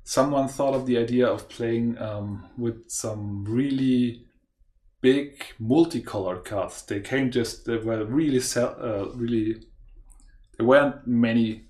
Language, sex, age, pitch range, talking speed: English, male, 30-49, 105-130 Hz, 130 wpm